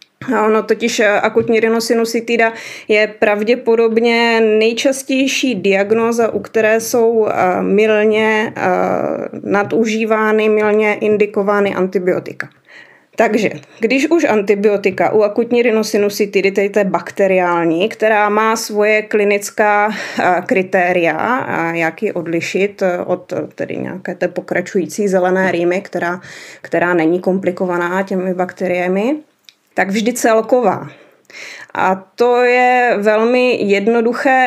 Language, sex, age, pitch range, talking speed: Czech, female, 20-39, 185-235 Hz, 95 wpm